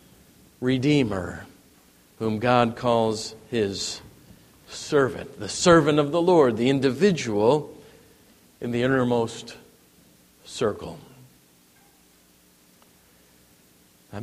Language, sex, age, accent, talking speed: English, male, 50-69, American, 75 wpm